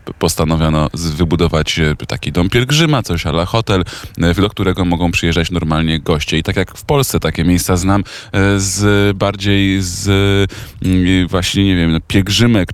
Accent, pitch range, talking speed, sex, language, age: native, 80-100 Hz, 135 wpm, male, Polish, 20-39